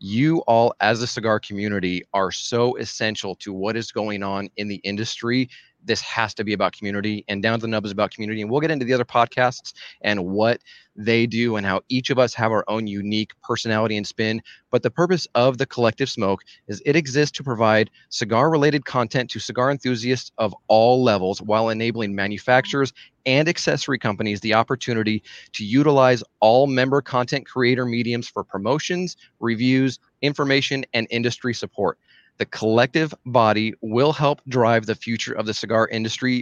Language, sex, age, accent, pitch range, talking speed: English, male, 30-49, American, 105-130 Hz, 180 wpm